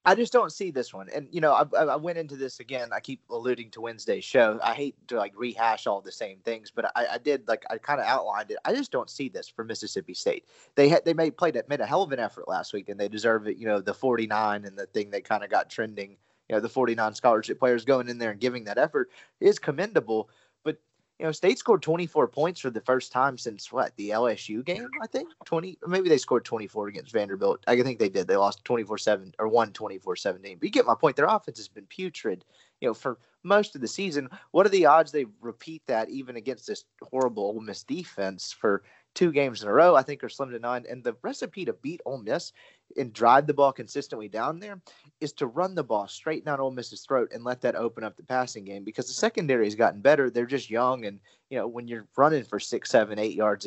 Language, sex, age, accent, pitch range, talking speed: English, male, 30-49, American, 115-165 Hz, 245 wpm